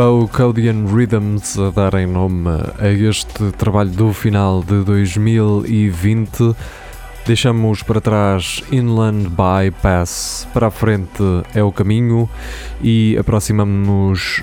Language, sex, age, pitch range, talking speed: Portuguese, male, 20-39, 95-110 Hz, 110 wpm